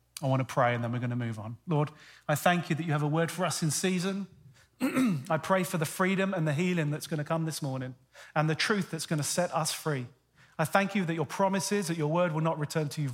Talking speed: 280 wpm